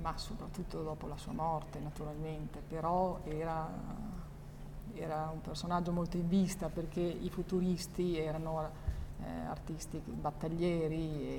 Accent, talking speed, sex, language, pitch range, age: native, 120 wpm, female, Italian, 160-185 Hz, 40-59